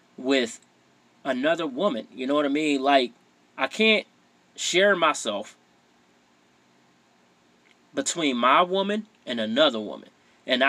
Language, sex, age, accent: English, male, 30-49, American